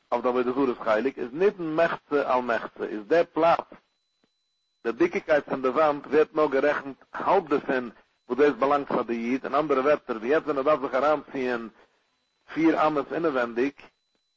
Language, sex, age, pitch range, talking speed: English, male, 50-69, 130-155 Hz, 185 wpm